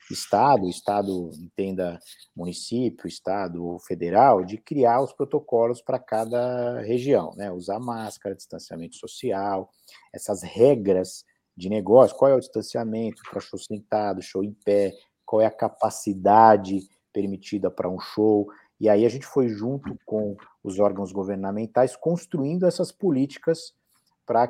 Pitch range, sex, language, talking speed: 100-135 Hz, male, Portuguese, 130 wpm